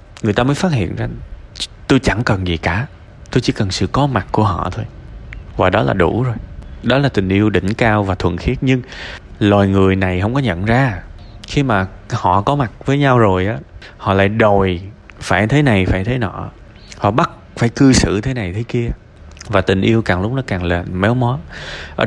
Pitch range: 90-115 Hz